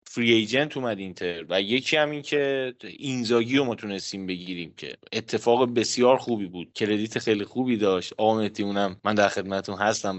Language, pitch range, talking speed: Persian, 110-145 Hz, 165 wpm